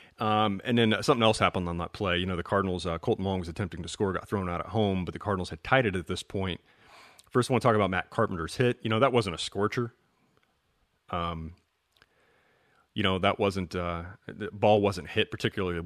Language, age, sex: English, 30-49, male